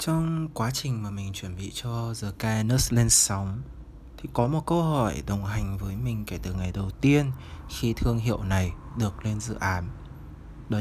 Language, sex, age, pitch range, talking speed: Vietnamese, male, 20-39, 100-120 Hz, 195 wpm